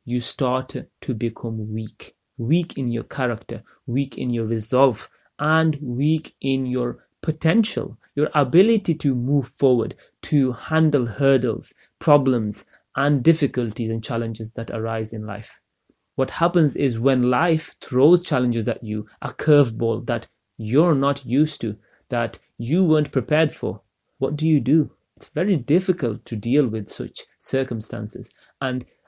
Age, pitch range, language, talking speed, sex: 30-49, 115-150 Hz, English, 140 wpm, male